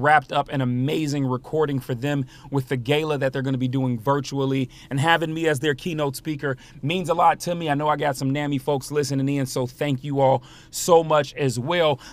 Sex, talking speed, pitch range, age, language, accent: male, 230 wpm, 125-150 Hz, 30-49, English, American